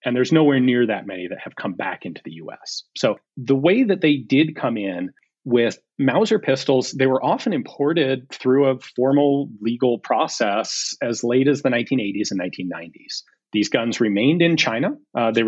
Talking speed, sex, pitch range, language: 180 wpm, male, 115-145 Hz, English